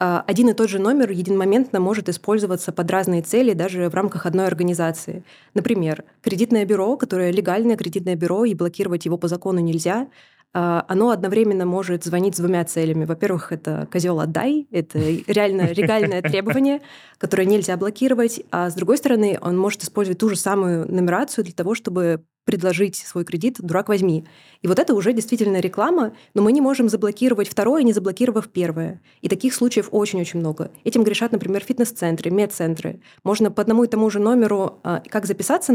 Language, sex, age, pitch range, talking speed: Russian, female, 20-39, 180-220 Hz, 170 wpm